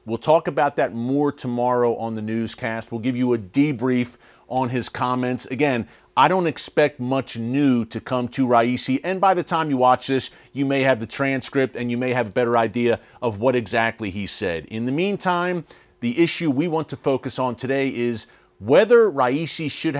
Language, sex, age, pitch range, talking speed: English, male, 40-59, 120-155 Hz, 200 wpm